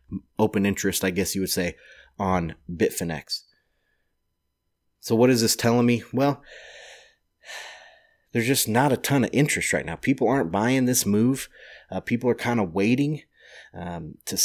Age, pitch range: 30-49, 95-120 Hz